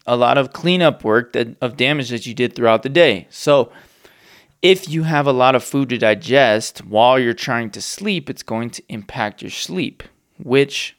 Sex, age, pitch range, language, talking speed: male, 20-39, 105-135 Hz, English, 195 wpm